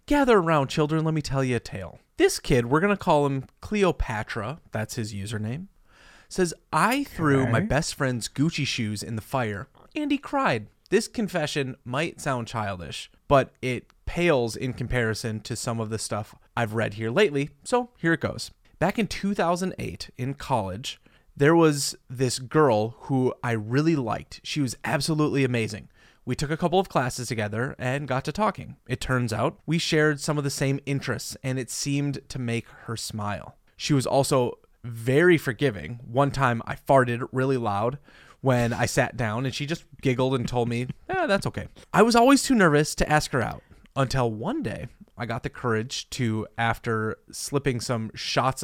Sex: male